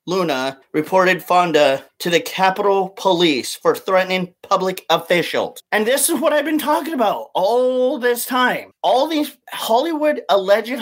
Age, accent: 30-49, American